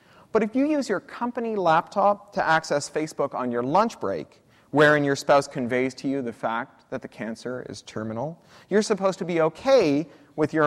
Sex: male